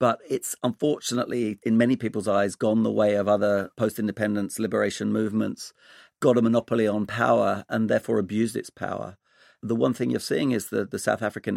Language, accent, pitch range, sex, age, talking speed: English, British, 100-115 Hz, male, 40-59, 180 wpm